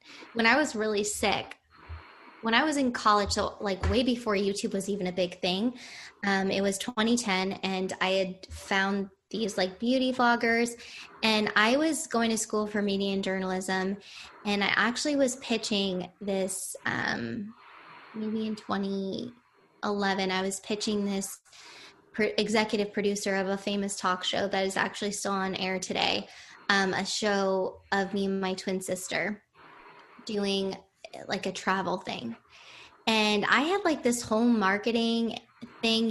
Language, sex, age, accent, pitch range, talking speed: English, female, 10-29, American, 195-230 Hz, 155 wpm